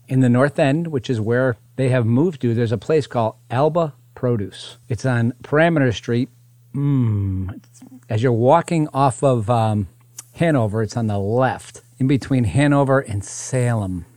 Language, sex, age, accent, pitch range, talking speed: English, male, 40-59, American, 115-135 Hz, 160 wpm